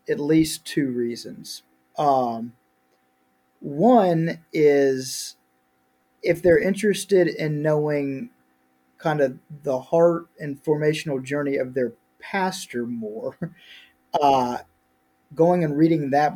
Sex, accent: male, American